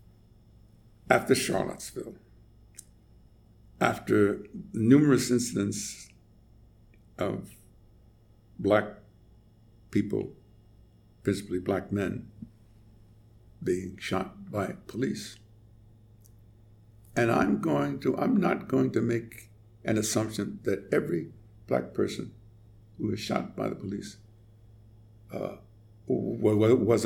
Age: 60-79